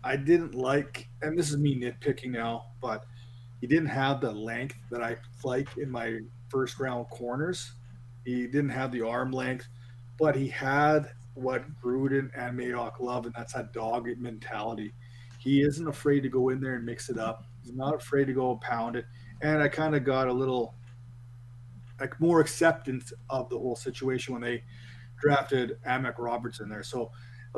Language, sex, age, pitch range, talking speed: English, male, 30-49, 120-140 Hz, 180 wpm